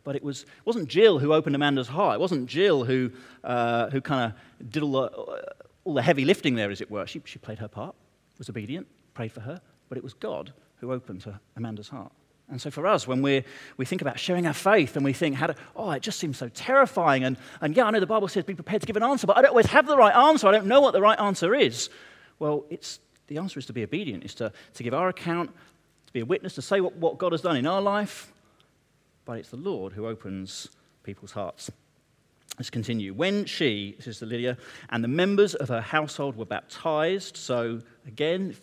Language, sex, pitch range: English, male, 125-180 Hz